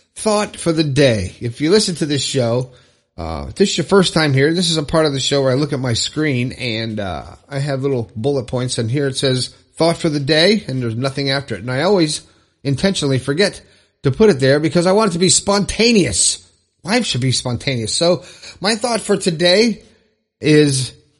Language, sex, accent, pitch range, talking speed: English, male, American, 115-165 Hz, 215 wpm